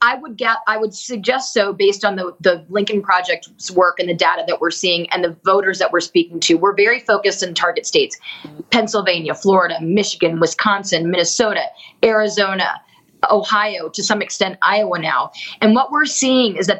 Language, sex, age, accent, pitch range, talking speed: English, female, 30-49, American, 185-220 Hz, 180 wpm